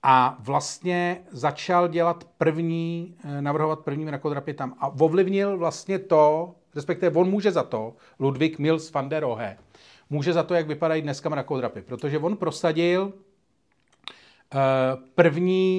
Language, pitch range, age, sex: Czech, 135-160 Hz, 40-59, male